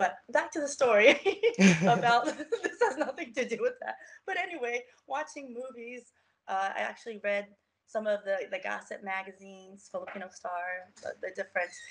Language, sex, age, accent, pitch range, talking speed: English, female, 20-39, American, 195-250 Hz, 160 wpm